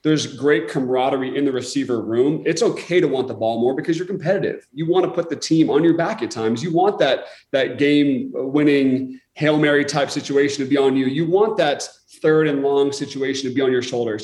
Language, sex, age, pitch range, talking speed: English, male, 30-49, 130-155 Hz, 225 wpm